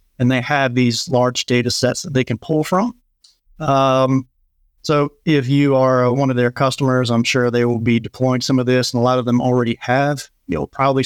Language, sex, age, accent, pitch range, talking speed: English, male, 30-49, American, 120-135 Hz, 210 wpm